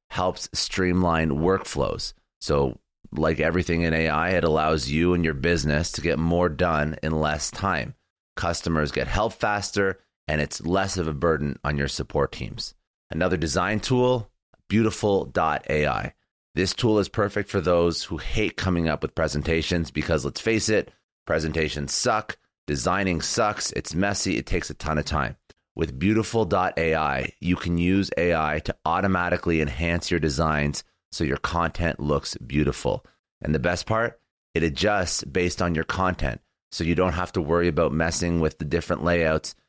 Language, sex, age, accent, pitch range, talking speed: English, male, 30-49, American, 80-95 Hz, 160 wpm